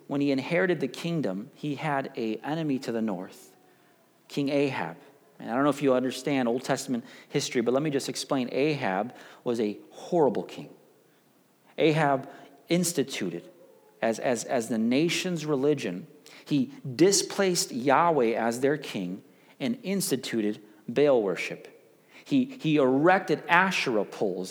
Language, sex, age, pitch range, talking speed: English, male, 40-59, 130-175 Hz, 135 wpm